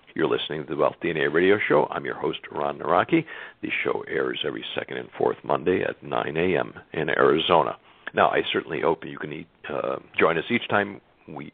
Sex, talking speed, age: male, 205 wpm, 60-79